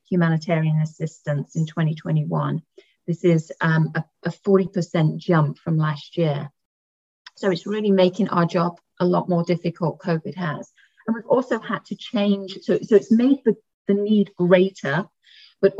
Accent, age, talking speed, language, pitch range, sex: British, 30-49, 150 wpm, English, 170-200 Hz, female